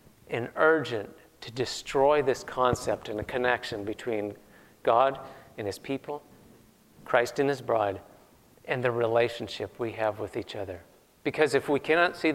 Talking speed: 150 wpm